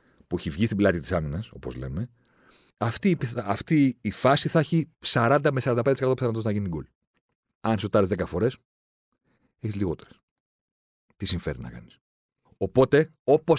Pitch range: 95-120 Hz